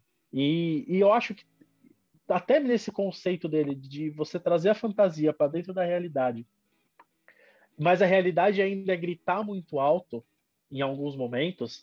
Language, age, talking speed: Portuguese, 20-39, 145 wpm